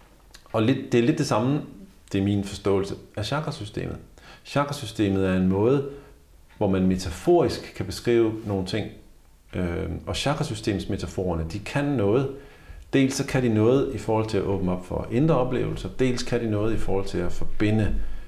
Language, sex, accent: Danish, male, native